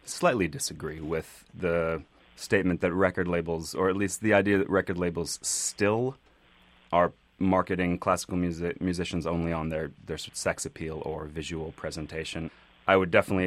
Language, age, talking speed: English, 30-49, 150 wpm